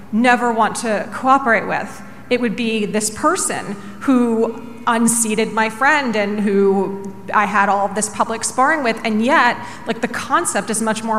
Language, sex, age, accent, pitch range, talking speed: English, female, 30-49, American, 205-235 Hz, 170 wpm